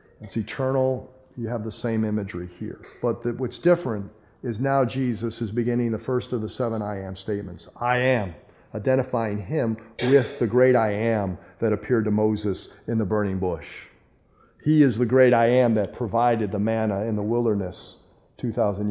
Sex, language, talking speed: male, English, 180 wpm